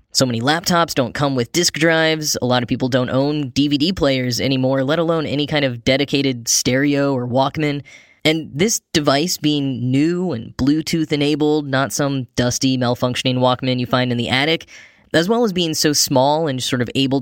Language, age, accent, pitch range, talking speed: English, 10-29, American, 130-165 Hz, 190 wpm